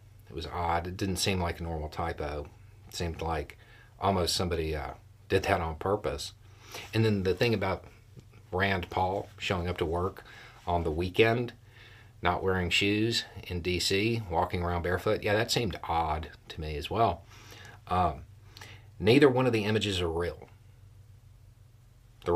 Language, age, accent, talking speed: English, 40-59, American, 155 wpm